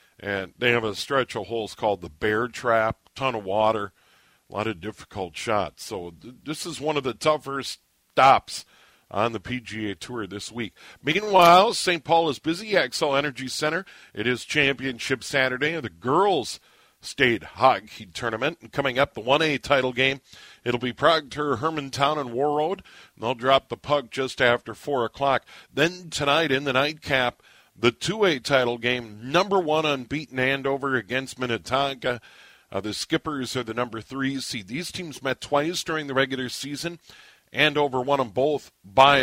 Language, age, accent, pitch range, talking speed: English, 50-69, American, 115-150 Hz, 170 wpm